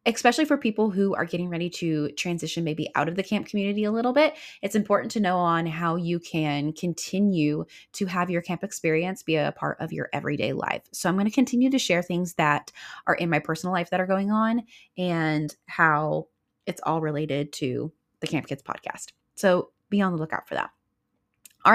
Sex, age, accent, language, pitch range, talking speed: female, 20-39, American, English, 160-215 Hz, 205 wpm